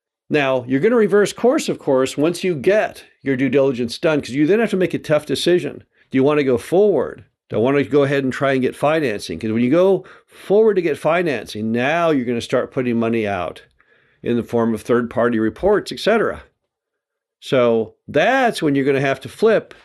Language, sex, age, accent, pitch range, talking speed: English, male, 50-69, American, 120-170 Hz, 225 wpm